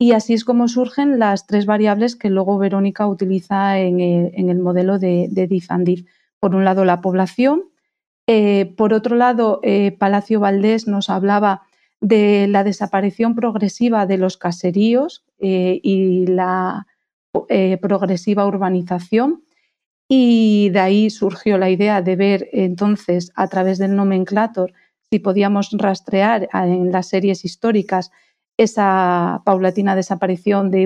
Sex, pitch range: female, 185-215 Hz